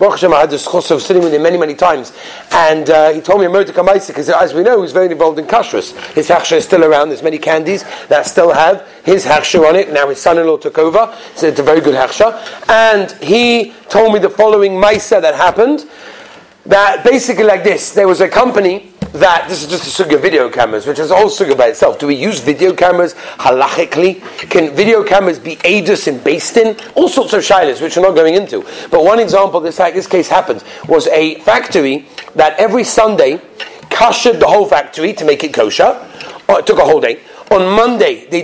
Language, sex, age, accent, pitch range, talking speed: English, male, 40-59, British, 170-230 Hz, 215 wpm